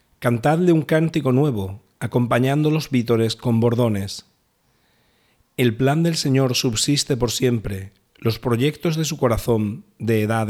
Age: 40-59